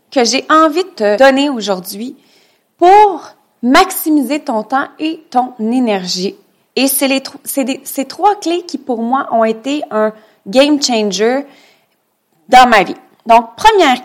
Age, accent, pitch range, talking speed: 30-49, Canadian, 220-290 Hz, 150 wpm